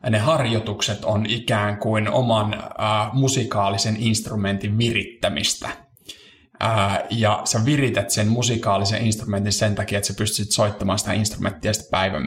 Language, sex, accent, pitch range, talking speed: Finnish, male, native, 105-115 Hz, 130 wpm